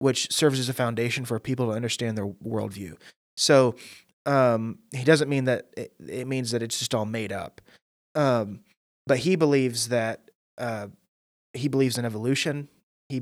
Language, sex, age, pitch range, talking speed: English, male, 20-39, 115-140 Hz, 170 wpm